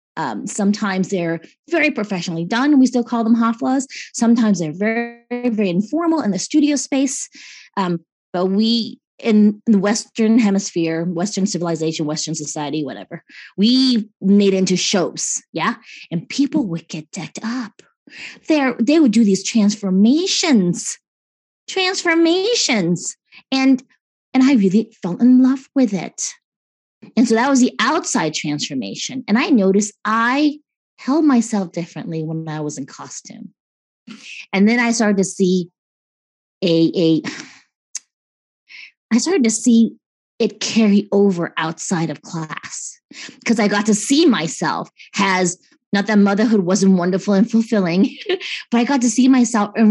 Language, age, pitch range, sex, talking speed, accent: English, 20-39, 175-250 Hz, female, 140 wpm, American